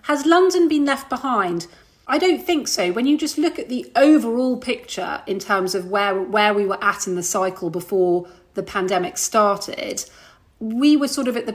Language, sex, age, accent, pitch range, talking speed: English, female, 40-59, British, 185-230 Hz, 195 wpm